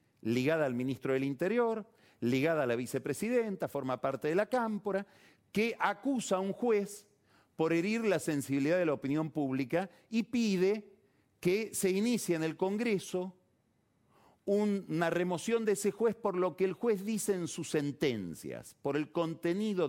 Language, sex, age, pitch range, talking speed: Spanish, male, 40-59, 120-195 Hz, 155 wpm